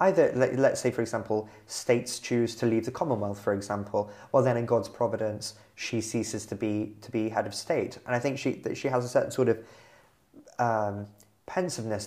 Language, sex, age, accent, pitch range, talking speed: English, male, 20-39, British, 115-140 Hz, 205 wpm